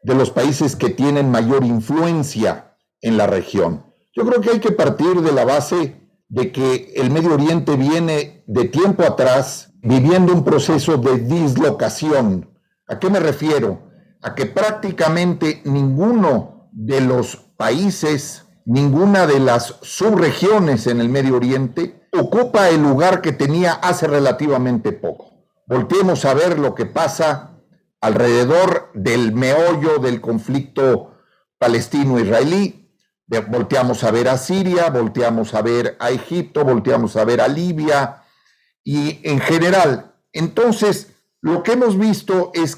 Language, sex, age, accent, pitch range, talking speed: Spanish, male, 50-69, Mexican, 130-180 Hz, 135 wpm